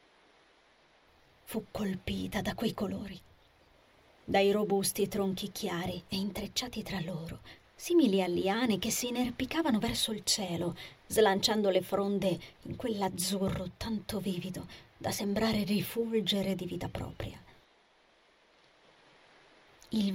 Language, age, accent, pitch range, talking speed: Italian, 30-49, native, 185-220 Hz, 105 wpm